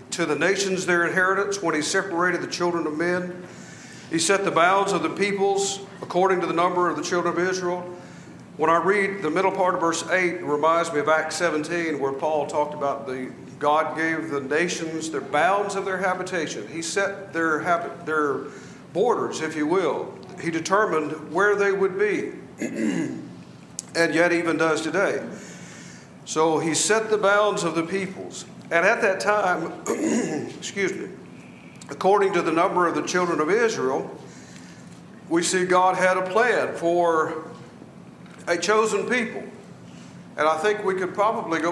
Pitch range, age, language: 155-195 Hz, 50-69, English